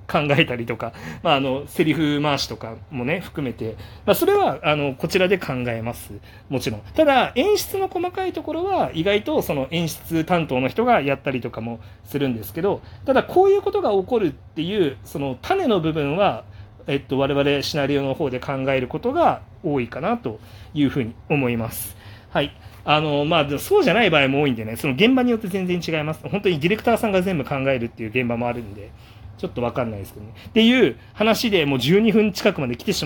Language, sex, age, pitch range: Japanese, male, 40-59, 120-180 Hz